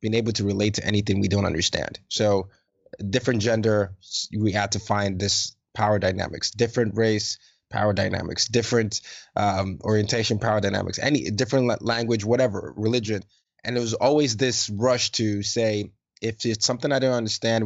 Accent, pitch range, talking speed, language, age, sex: American, 100-115 Hz, 160 wpm, English, 20-39, male